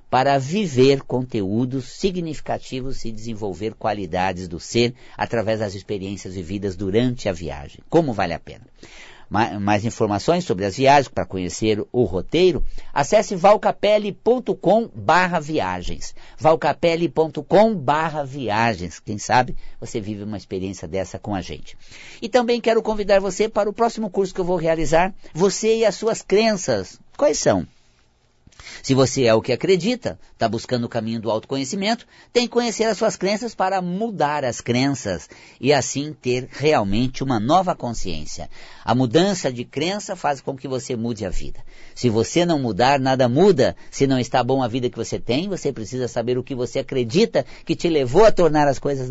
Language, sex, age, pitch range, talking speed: Portuguese, male, 50-69, 115-180 Hz, 165 wpm